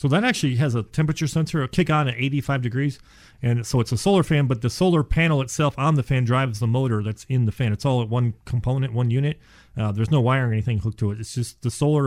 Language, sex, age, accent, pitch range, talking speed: English, male, 40-59, American, 115-140 Hz, 265 wpm